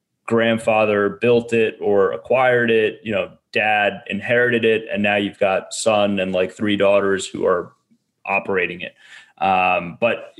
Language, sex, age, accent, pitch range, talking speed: English, male, 20-39, American, 100-115 Hz, 150 wpm